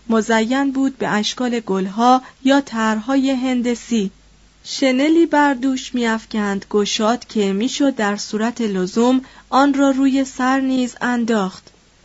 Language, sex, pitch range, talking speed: Persian, female, 205-260 Hz, 120 wpm